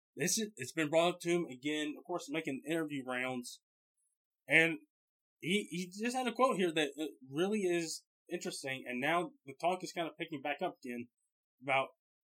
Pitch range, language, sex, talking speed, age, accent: 140-175 Hz, English, male, 185 wpm, 20-39, American